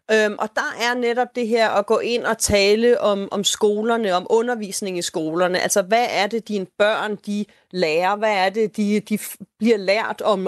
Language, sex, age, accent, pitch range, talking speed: Danish, female, 30-49, native, 195-235 Hz, 195 wpm